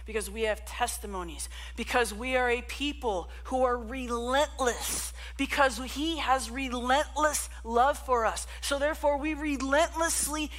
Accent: American